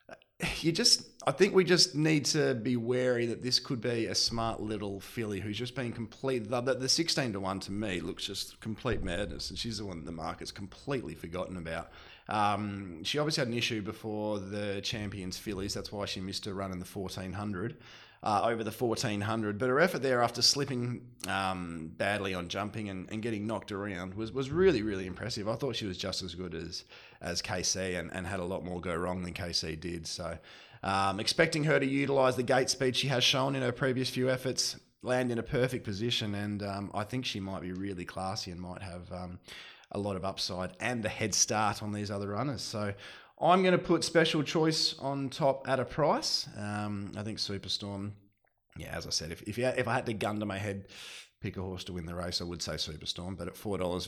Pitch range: 95-125 Hz